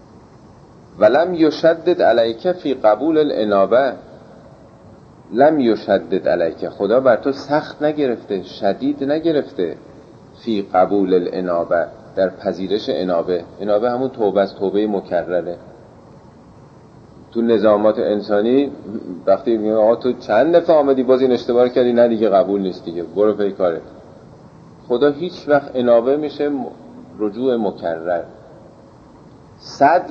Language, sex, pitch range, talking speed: Persian, male, 100-135 Hz, 115 wpm